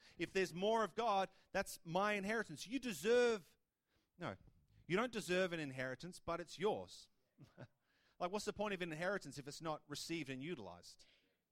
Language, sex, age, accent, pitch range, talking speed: English, male, 30-49, Australian, 155-195 Hz, 165 wpm